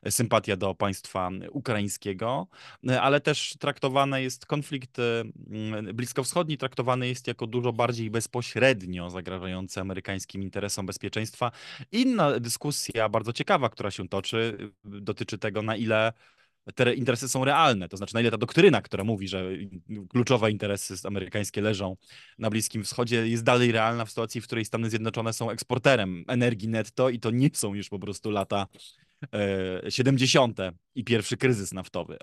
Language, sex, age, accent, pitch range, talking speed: Polish, male, 20-39, native, 100-130 Hz, 145 wpm